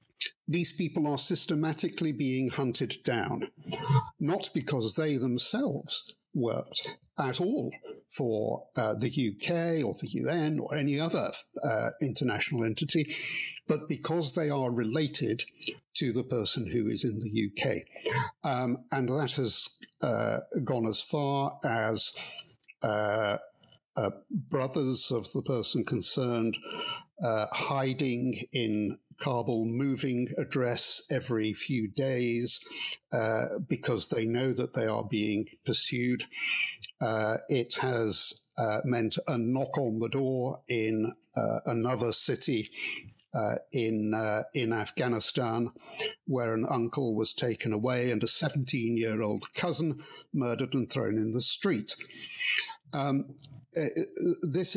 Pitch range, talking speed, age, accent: 115-150 Hz, 120 wpm, 60-79, British